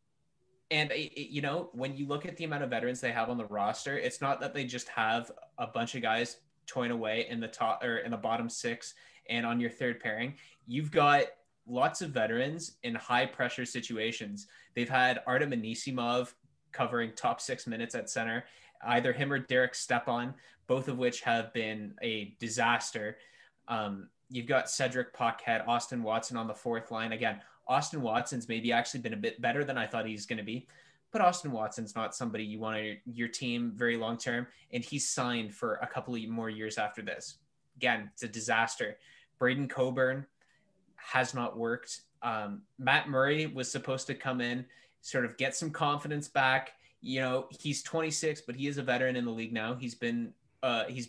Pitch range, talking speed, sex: 115-140 Hz, 190 wpm, male